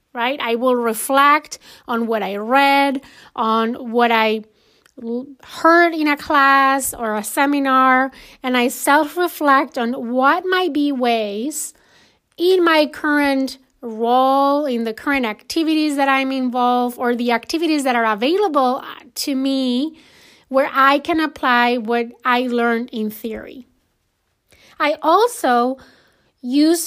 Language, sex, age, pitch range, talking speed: English, female, 30-49, 245-295 Hz, 125 wpm